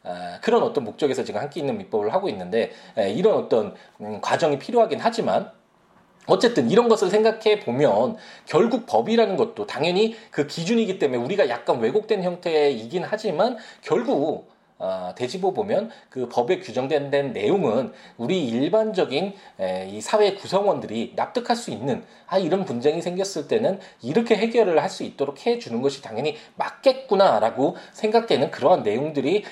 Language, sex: Korean, male